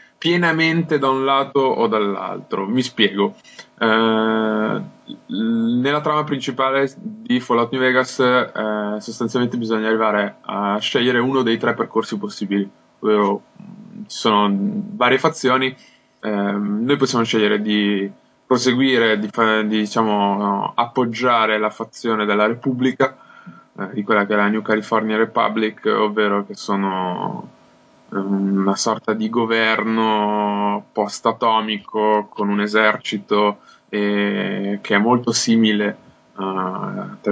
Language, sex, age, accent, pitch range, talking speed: Italian, male, 20-39, native, 105-120 Hz, 120 wpm